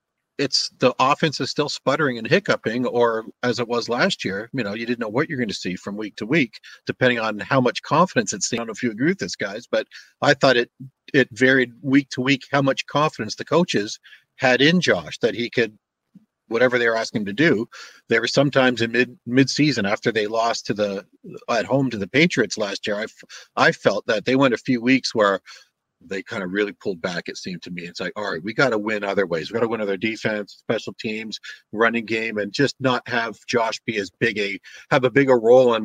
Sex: male